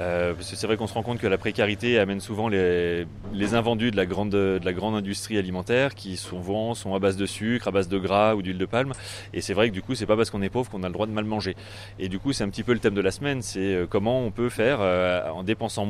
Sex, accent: male, French